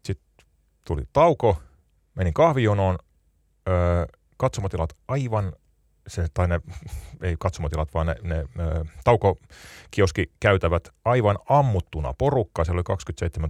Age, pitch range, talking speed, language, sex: 30-49, 80-110 Hz, 105 wpm, Finnish, male